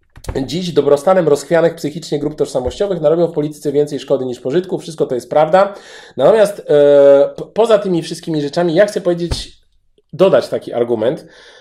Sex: male